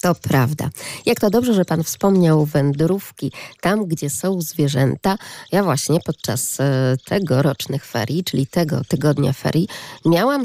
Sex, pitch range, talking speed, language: female, 145-190 Hz, 145 wpm, Polish